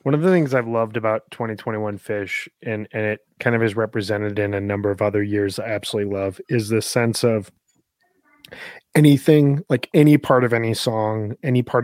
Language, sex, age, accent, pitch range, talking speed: English, male, 20-39, American, 105-130 Hz, 195 wpm